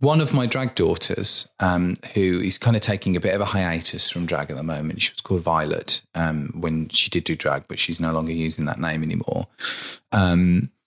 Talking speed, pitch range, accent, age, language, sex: 220 wpm, 85-120 Hz, British, 30-49, English, male